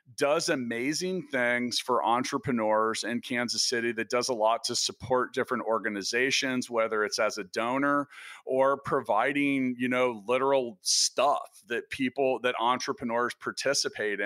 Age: 40-59